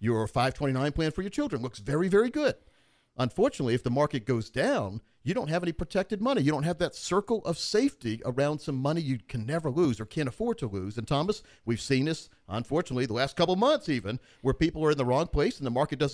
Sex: male